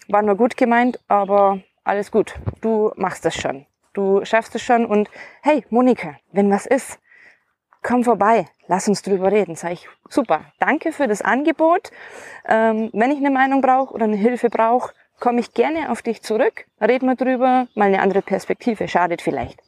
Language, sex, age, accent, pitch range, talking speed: German, female, 20-39, German, 180-235 Hz, 180 wpm